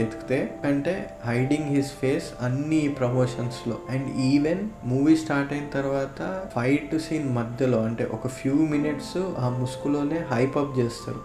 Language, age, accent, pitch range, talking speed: Telugu, 20-39, native, 115-135 Hz, 145 wpm